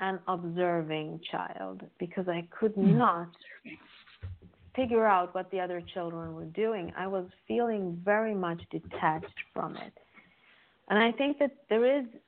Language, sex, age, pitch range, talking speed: English, female, 40-59, 170-215 Hz, 140 wpm